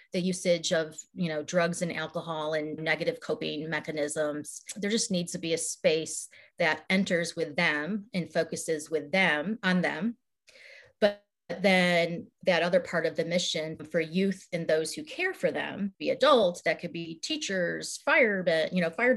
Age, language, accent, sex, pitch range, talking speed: 30-49, English, American, female, 165-205 Hz, 170 wpm